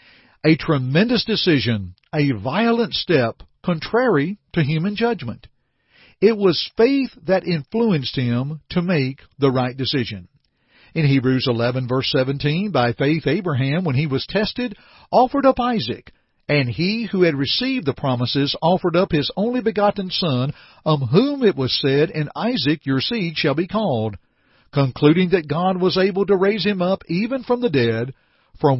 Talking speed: 155 wpm